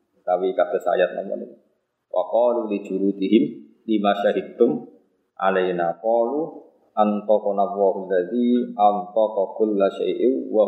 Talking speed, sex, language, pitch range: 130 wpm, male, Indonesian, 100-135 Hz